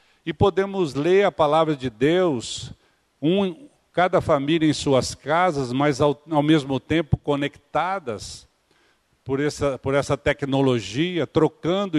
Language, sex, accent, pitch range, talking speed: Portuguese, male, Brazilian, 130-175 Hz, 115 wpm